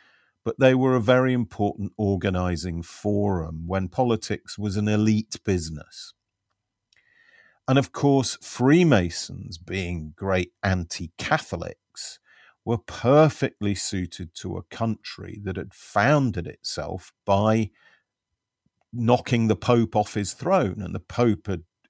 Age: 50-69